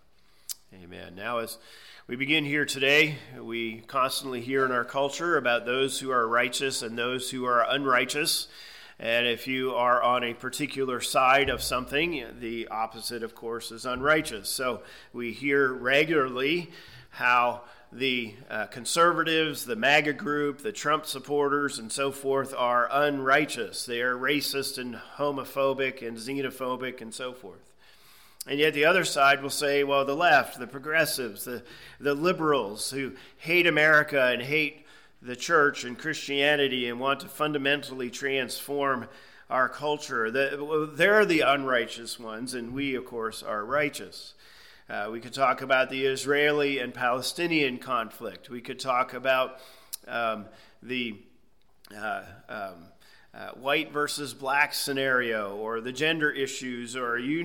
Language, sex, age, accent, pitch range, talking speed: English, male, 40-59, American, 120-145 Hz, 145 wpm